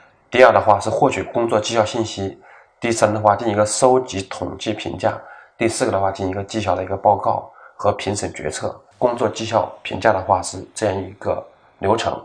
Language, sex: Chinese, male